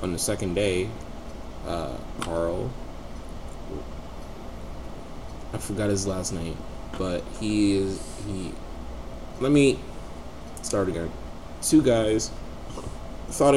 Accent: American